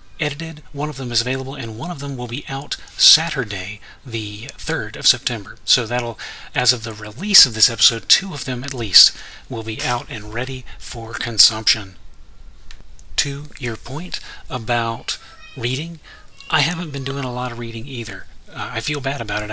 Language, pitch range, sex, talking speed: English, 110-130 Hz, male, 180 wpm